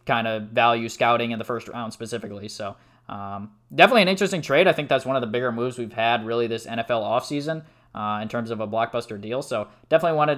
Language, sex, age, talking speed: English, male, 20-39, 220 wpm